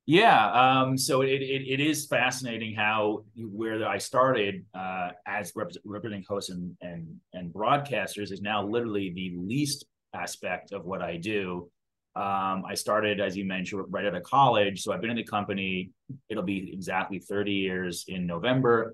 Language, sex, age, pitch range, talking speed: English, male, 30-49, 90-115 Hz, 170 wpm